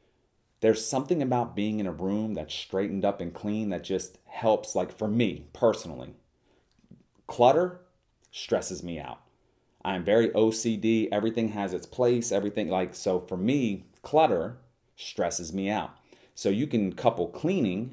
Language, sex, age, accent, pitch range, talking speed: English, male, 30-49, American, 90-115 Hz, 145 wpm